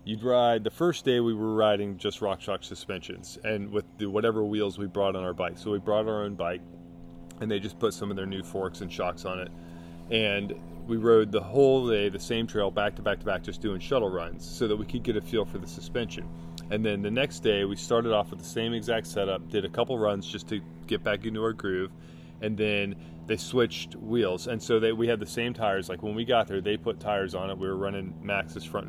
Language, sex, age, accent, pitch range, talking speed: English, male, 30-49, American, 85-110 Hz, 250 wpm